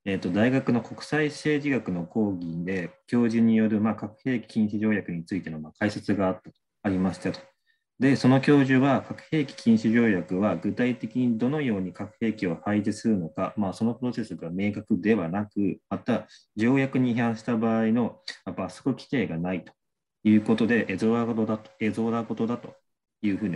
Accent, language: native, Japanese